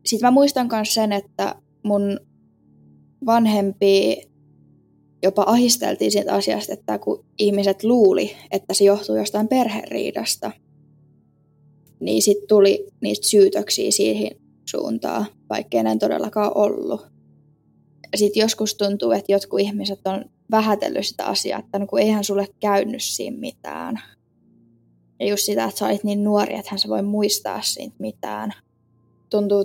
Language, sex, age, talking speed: Finnish, female, 10-29, 130 wpm